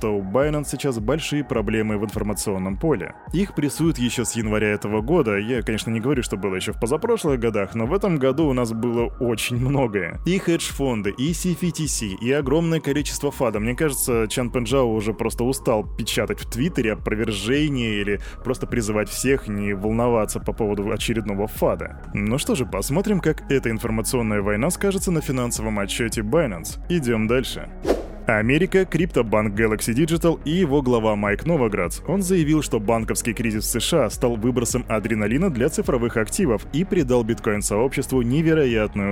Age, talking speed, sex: 20-39, 160 wpm, male